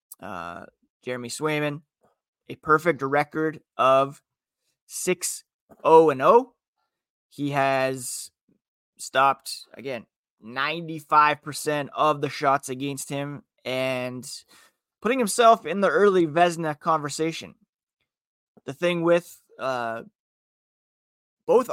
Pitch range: 130-160 Hz